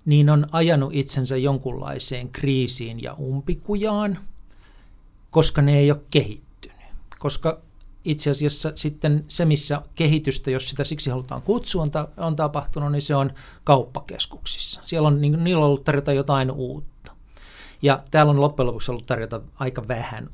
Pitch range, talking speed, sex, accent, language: 130-155 Hz, 145 wpm, male, native, Finnish